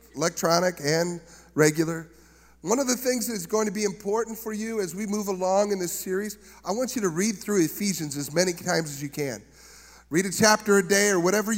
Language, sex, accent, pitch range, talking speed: English, male, American, 195-245 Hz, 220 wpm